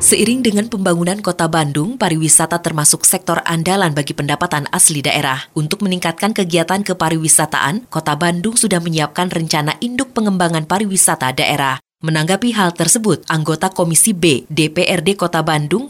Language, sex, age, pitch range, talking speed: Indonesian, female, 20-39, 155-200 Hz, 130 wpm